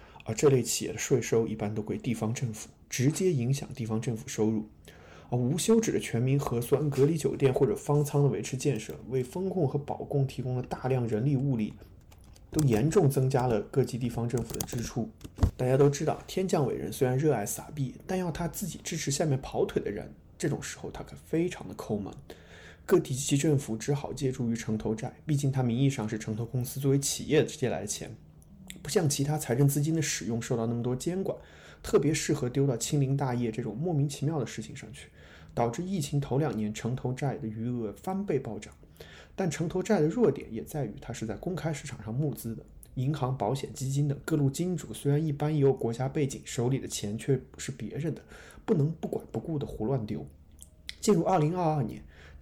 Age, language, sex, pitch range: 20-39, Chinese, male, 115-150 Hz